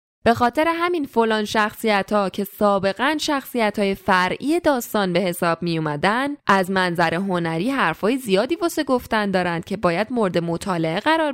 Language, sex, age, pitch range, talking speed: Persian, female, 10-29, 190-255 Hz, 150 wpm